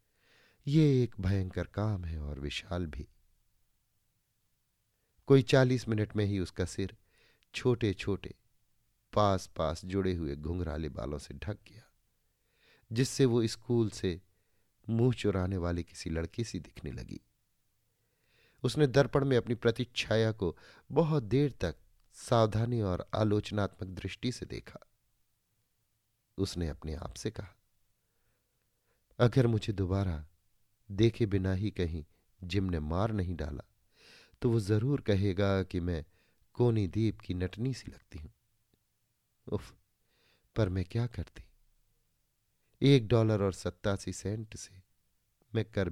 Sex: male